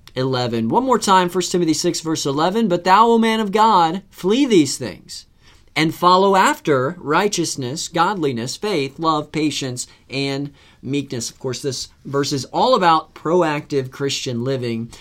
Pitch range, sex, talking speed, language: 130-175 Hz, male, 150 wpm, English